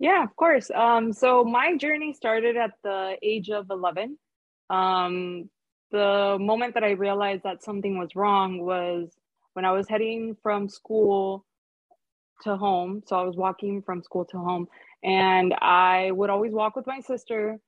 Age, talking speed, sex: 20-39, 165 wpm, female